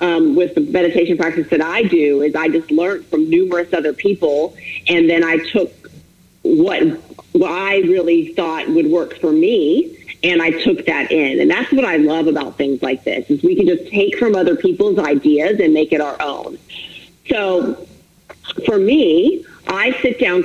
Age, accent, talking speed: 40-59, American, 185 wpm